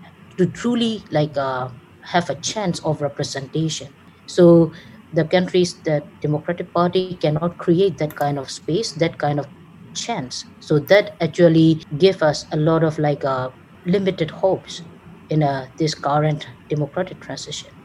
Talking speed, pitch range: 145 wpm, 150-175 Hz